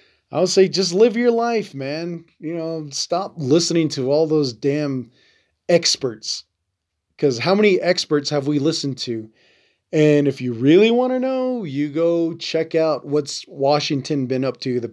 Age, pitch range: 20-39, 125-165 Hz